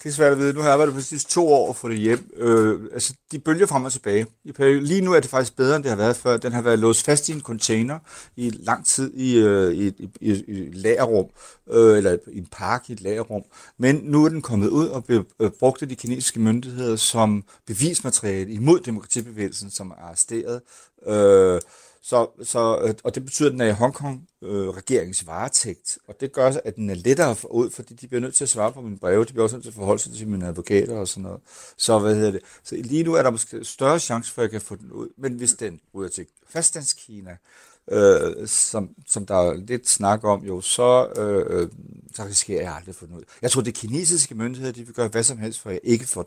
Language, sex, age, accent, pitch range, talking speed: Danish, male, 60-79, native, 105-135 Hz, 240 wpm